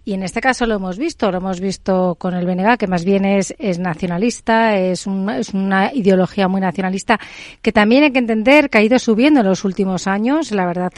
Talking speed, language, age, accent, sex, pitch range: 225 wpm, Spanish, 40-59, Spanish, female, 180-235 Hz